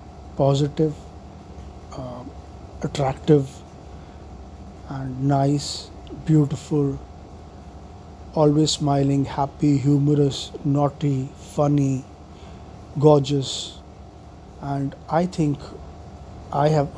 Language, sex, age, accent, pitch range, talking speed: English, male, 50-69, Indian, 90-145 Hz, 65 wpm